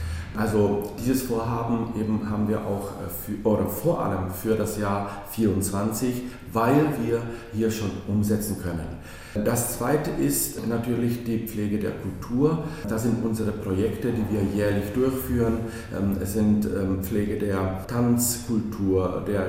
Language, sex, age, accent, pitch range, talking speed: Czech, male, 40-59, German, 100-120 Hz, 130 wpm